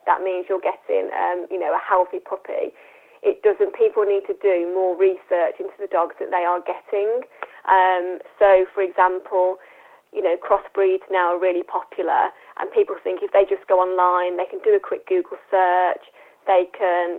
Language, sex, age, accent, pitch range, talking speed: English, female, 20-39, British, 180-205 Hz, 185 wpm